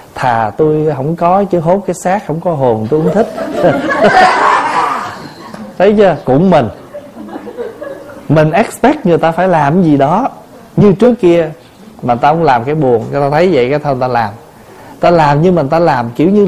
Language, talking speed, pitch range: Vietnamese, 190 wpm, 130-195 Hz